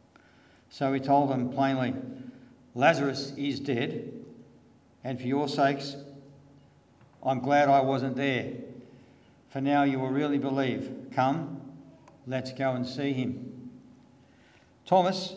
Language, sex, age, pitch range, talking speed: English, male, 60-79, 125-140 Hz, 115 wpm